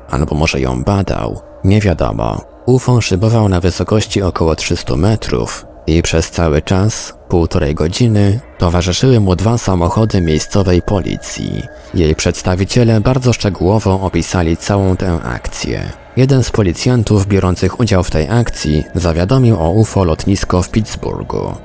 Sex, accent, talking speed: male, native, 130 wpm